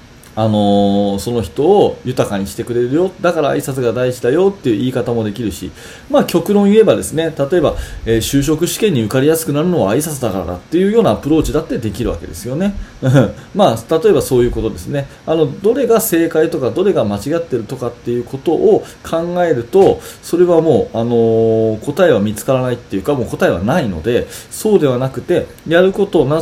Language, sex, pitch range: Japanese, male, 115-180 Hz